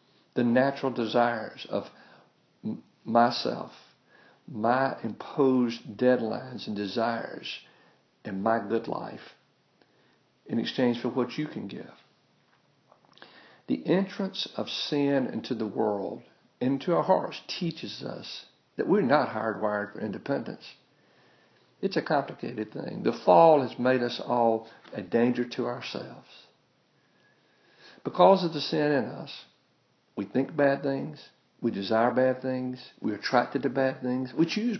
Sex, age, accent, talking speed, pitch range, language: male, 60-79, American, 130 wpm, 115-135 Hz, English